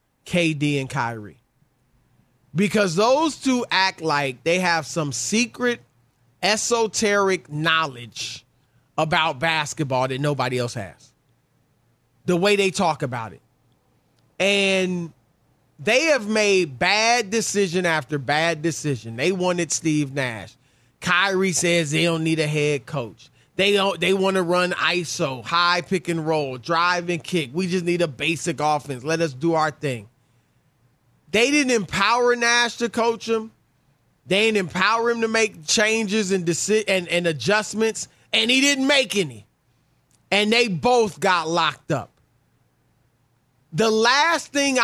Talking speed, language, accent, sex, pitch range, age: 135 wpm, English, American, male, 135-200 Hz, 30-49